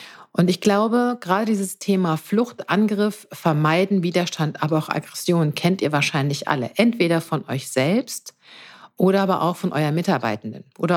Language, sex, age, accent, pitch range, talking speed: German, female, 50-69, German, 150-195 Hz, 155 wpm